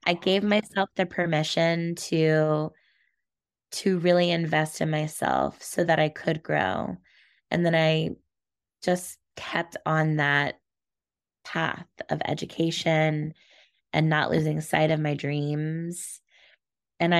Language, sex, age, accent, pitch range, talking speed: English, female, 20-39, American, 155-175 Hz, 120 wpm